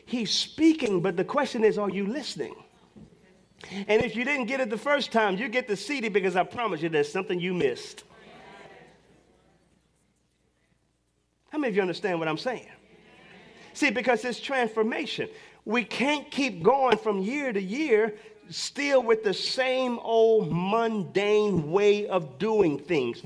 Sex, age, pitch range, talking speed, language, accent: male, 40-59, 190-245 Hz, 155 wpm, English, American